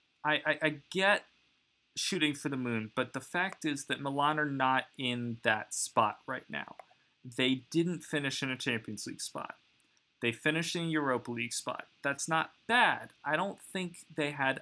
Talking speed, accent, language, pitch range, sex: 180 wpm, American, English, 125-160 Hz, male